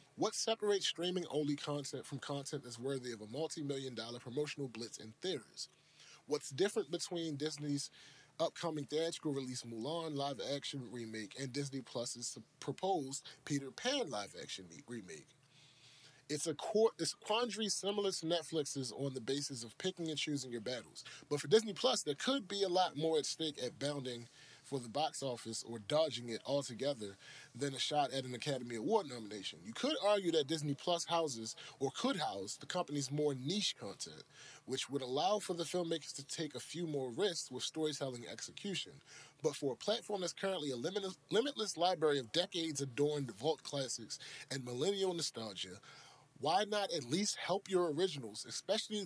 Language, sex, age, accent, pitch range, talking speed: English, male, 20-39, American, 130-170 Hz, 165 wpm